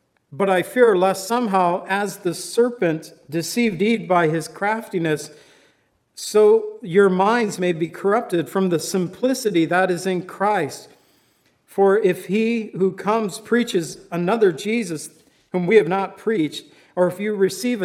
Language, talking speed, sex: English, 145 wpm, male